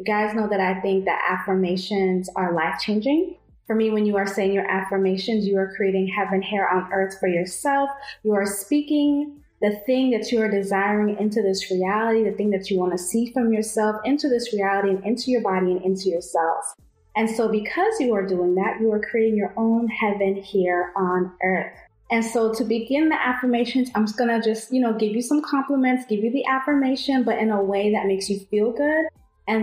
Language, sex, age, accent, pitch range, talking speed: English, female, 20-39, American, 195-230 Hz, 210 wpm